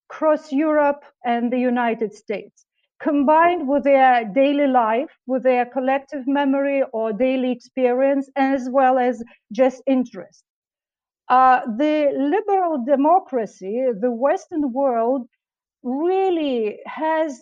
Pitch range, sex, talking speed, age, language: 245-290 Hz, female, 110 wpm, 50-69, English